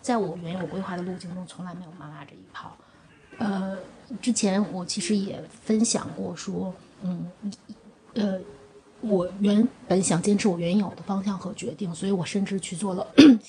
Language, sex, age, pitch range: Chinese, female, 20-39, 180-230 Hz